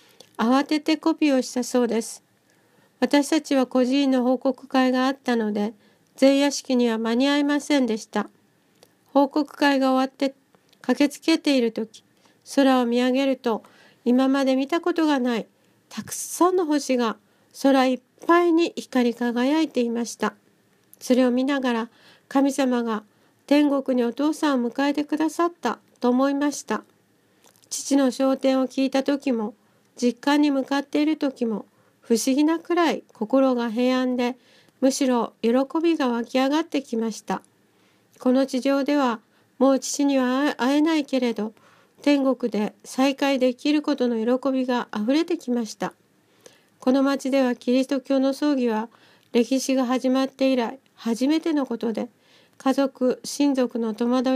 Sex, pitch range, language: female, 245-280 Hz, Japanese